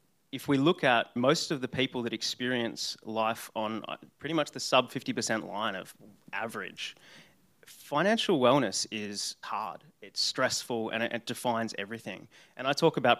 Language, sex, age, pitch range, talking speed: English, male, 30-49, 105-130 Hz, 155 wpm